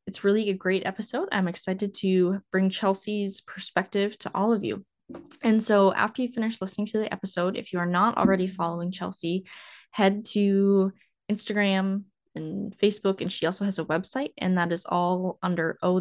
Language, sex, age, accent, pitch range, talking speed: English, female, 10-29, American, 175-210 Hz, 180 wpm